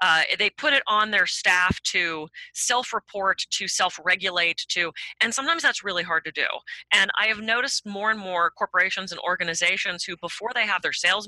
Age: 30-49